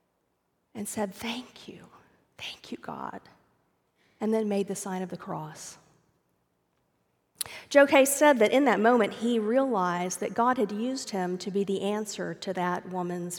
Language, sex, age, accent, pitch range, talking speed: English, female, 40-59, American, 195-250 Hz, 160 wpm